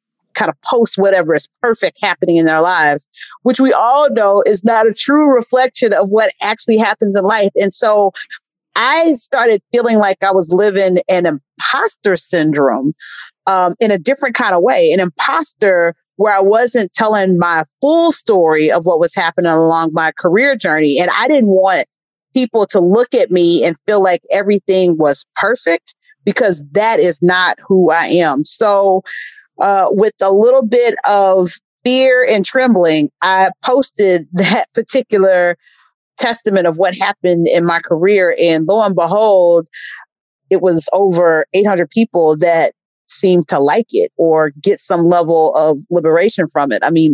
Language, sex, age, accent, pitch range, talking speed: English, female, 40-59, American, 165-215 Hz, 165 wpm